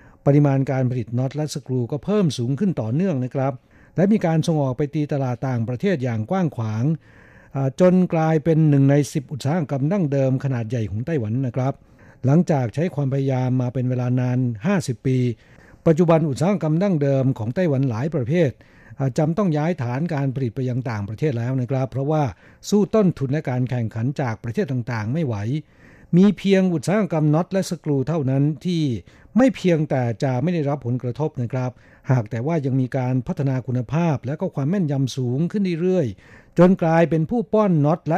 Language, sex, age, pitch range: Thai, male, 60-79, 125-160 Hz